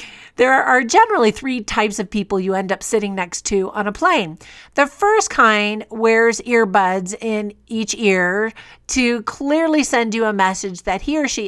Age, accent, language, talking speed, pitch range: 50-69, American, English, 180 wpm, 195-250 Hz